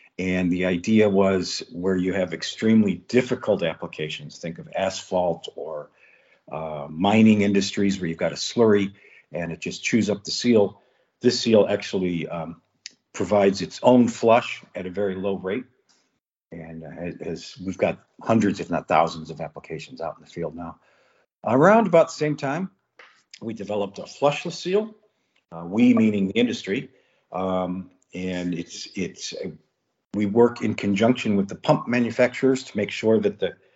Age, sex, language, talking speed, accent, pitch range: 50-69, male, English, 160 wpm, American, 90-125 Hz